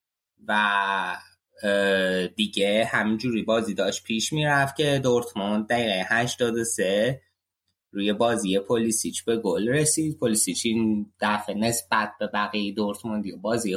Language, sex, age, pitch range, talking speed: Persian, male, 20-39, 100-120 Hz, 110 wpm